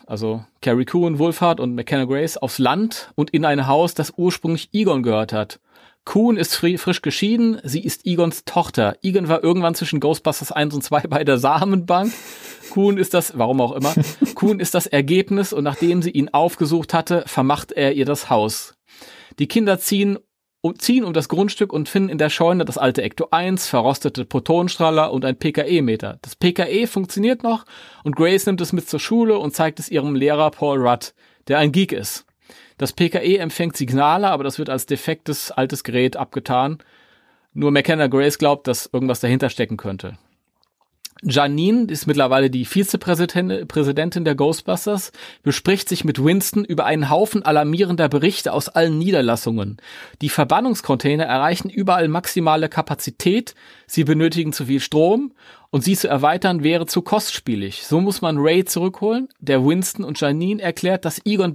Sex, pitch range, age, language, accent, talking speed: male, 140-185 Hz, 30-49, German, German, 165 wpm